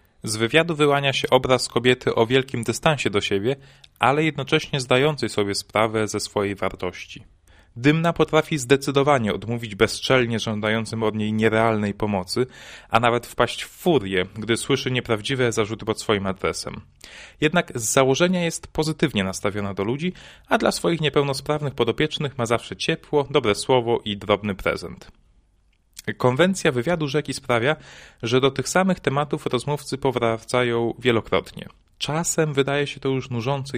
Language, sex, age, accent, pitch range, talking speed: Polish, male, 30-49, native, 110-145 Hz, 140 wpm